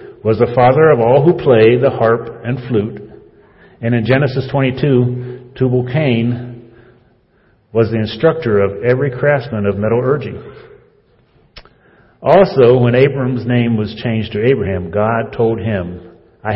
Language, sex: English, male